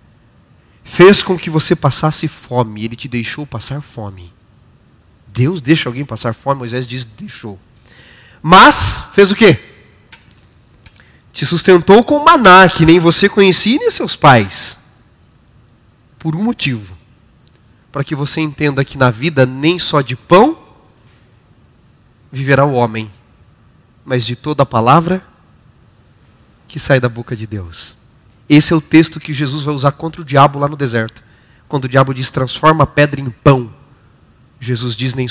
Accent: Brazilian